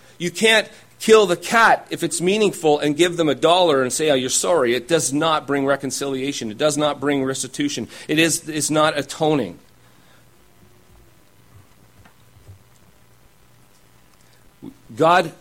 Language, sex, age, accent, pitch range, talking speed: English, male, 40-59, American, 125-170 Hz, 130 wpm